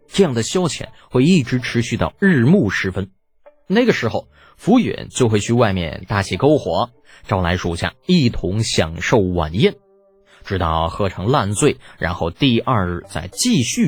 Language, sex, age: Chinese, male, 20-39